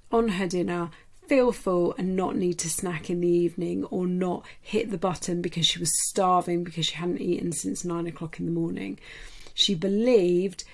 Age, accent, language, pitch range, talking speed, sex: 40-59, British, English, 175-200 Hz, 190 wpm, female